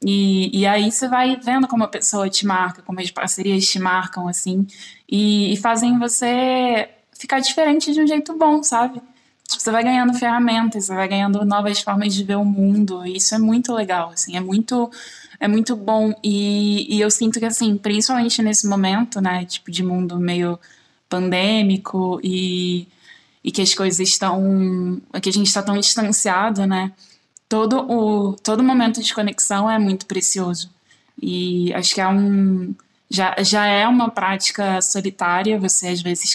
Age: 10-29